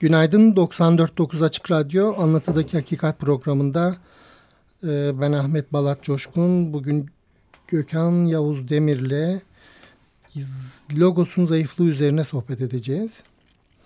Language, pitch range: Turkish, 140-175 Hz